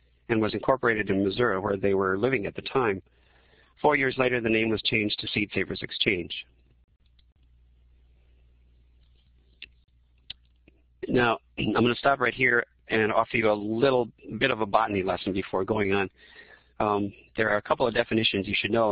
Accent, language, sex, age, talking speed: American, English, male, 50-69, 170 wpm